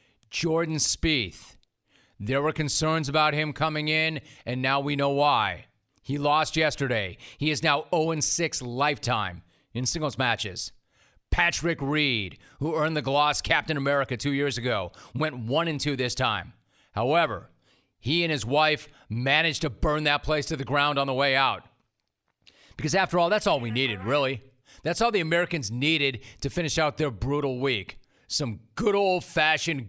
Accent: American